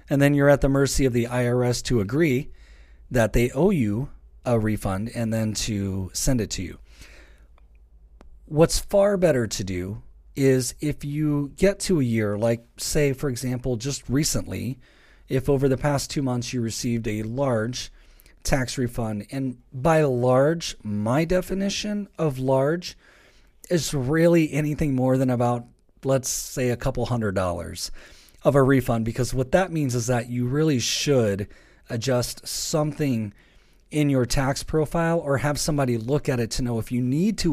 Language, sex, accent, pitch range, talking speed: English, male, American, 115-145 Hz, 165 wpm